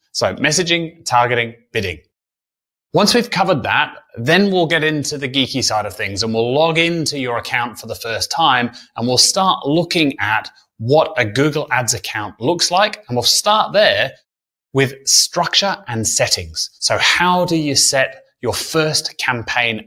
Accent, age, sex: British, 30-49, male